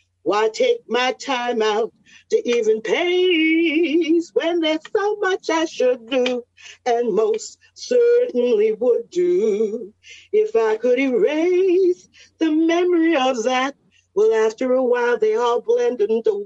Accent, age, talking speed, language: American, 40-59, 130 wpm, English